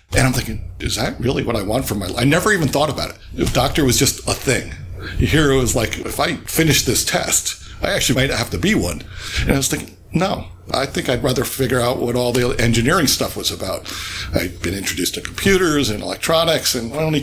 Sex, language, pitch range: male, English, 95-135 Hz